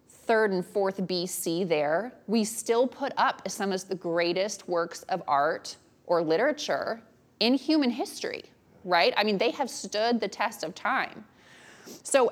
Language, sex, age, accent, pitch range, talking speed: English, female, 20-39, American, 185-245 Hz, 155 wpm